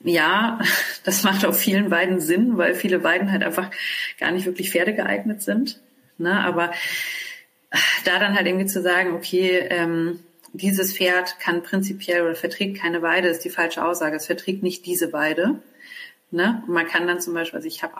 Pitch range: 170-195 Hz